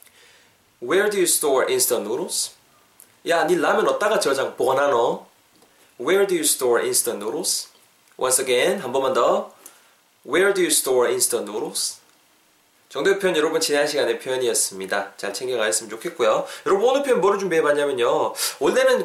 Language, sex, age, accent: Korean, male, 20-39, native